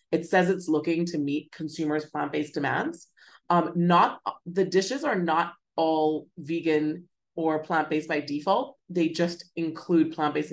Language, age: English, 30-49